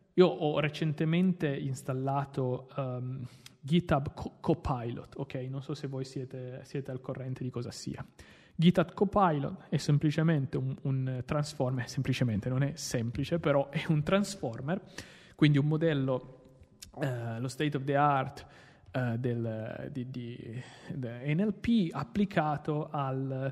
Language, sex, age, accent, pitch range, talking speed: Italian, male, 30-49, native, 130-165 Hz, 130 wpm